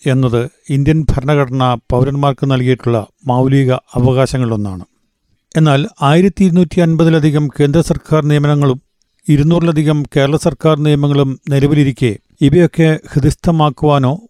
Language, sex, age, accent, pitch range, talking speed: Malayalam, male, 50-69, native, 135-155 Hz, 85 wpm